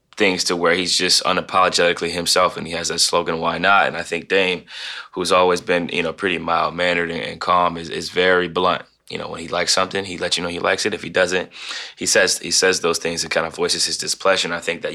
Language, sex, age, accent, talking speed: English, male, 20-39, American, 255 wpm